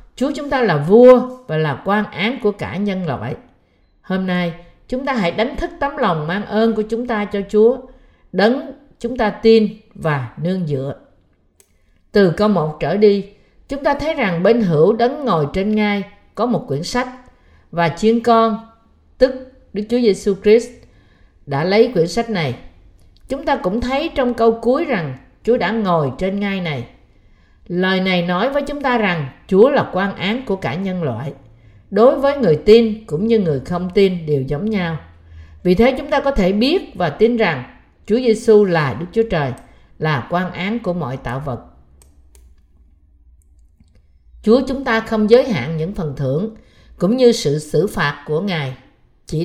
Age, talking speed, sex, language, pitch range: 50-69, 180 wpm, female, Vietnamese, 150-225 Hz